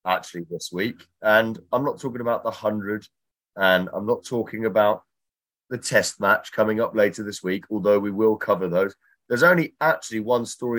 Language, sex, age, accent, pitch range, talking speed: English, male, 30-49, British, 100-130 Hz, 185 wpm